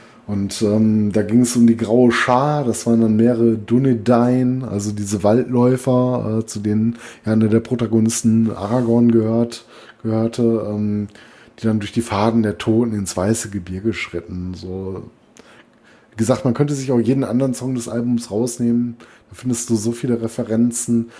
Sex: male